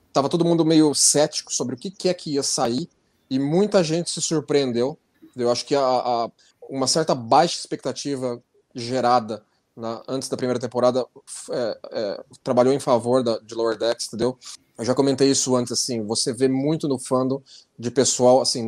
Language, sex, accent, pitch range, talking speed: Portuguese, male, Brazilian, 125-170 Hz, 185 wpm